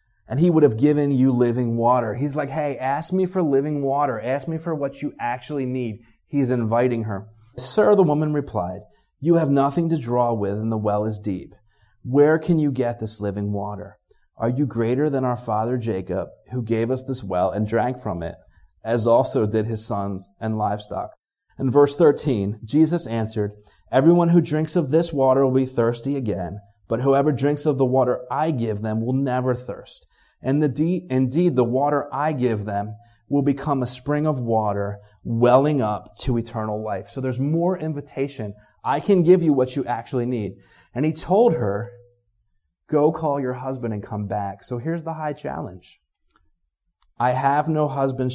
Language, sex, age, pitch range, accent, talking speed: English, male, 30-49, 110-145 Hz, American, 185 wpm